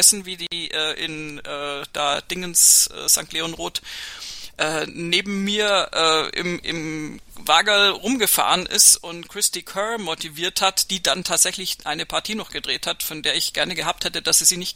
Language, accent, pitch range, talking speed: German, German, 160-195 Hz, 170 wpm